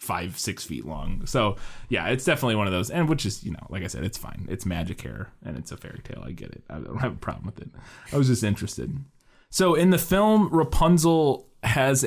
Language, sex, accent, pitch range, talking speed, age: English, male, American, 90-115 Hz, 245 wpm, 20-39